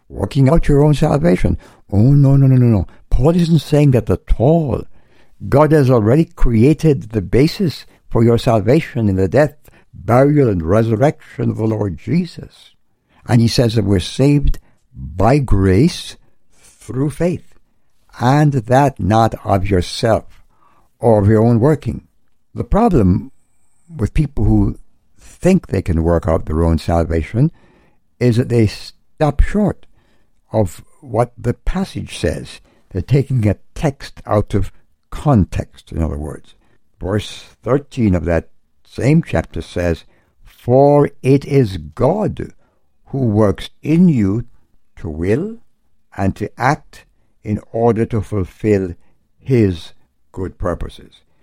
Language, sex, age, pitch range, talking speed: English, male, 60-79, 95-140 Hz, 135 wpm